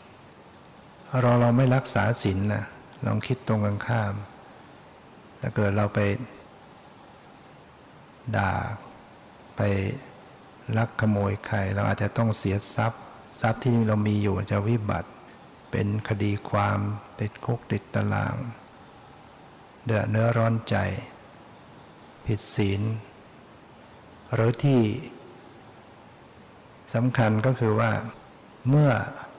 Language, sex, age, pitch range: Thai, male, 60-79, 105-120 Hz